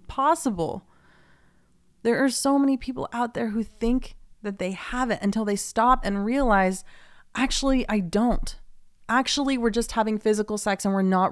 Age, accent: 30-49, American